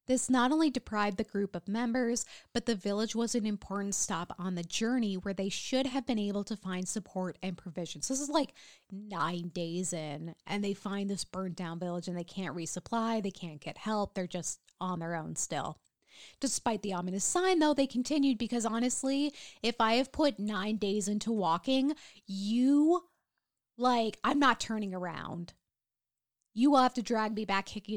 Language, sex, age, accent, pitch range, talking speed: English, female, 20-39, American, 185-240 Hz, 185 wpm